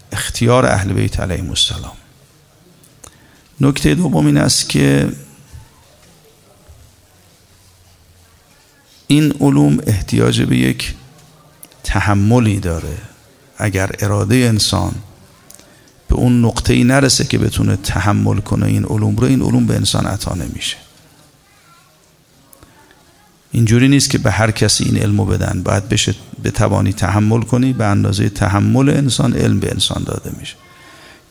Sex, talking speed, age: male, 115 wpm, 50-69